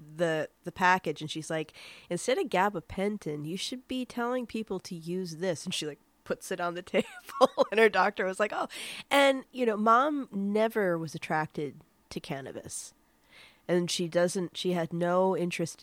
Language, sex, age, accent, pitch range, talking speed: English, female, 30-49, American, 160-210 Hz, 180 wpm